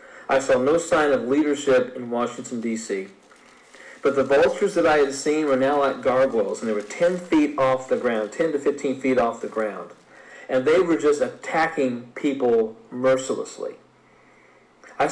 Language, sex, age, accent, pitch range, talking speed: English, male, 40-59, American, 130-170 Hz, 170 wpm